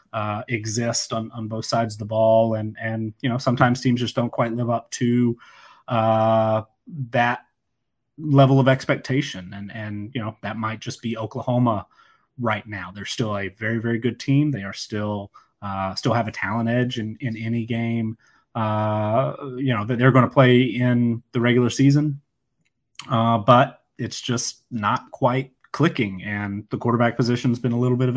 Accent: American